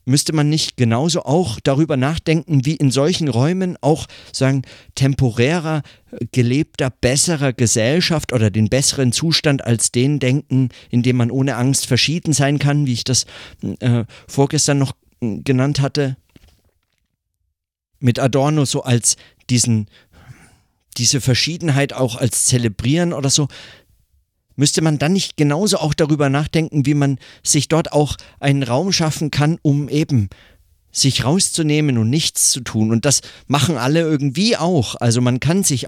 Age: 50-69